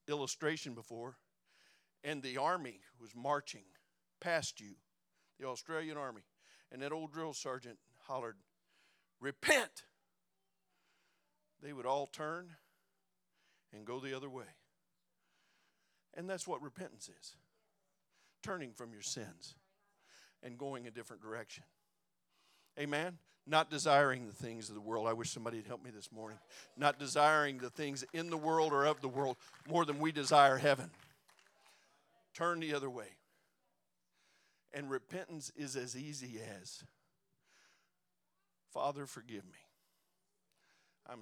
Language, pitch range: English, 120-150 Hz